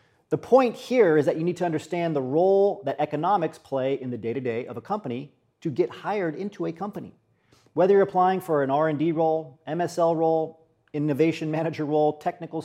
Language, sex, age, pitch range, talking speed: English, male, 40-59, 140-180 Hz, 185 wpm